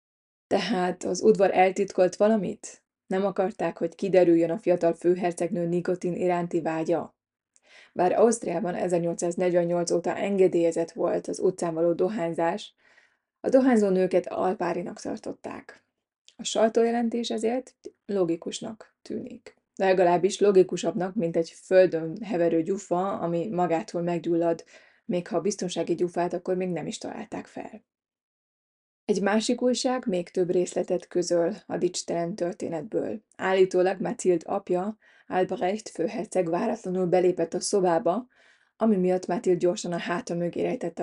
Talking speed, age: 120 wpm, 20-39